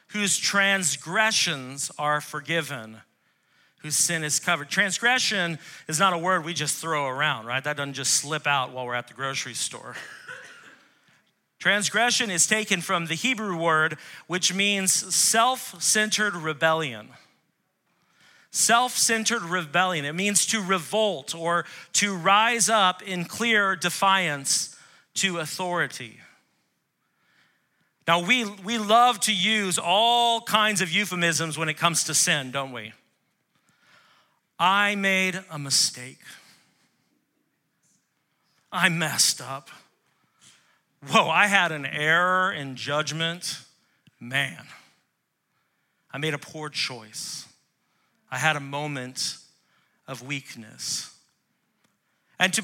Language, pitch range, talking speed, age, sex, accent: English, 150-200 Hz, 115 wpm, 40-59, male, American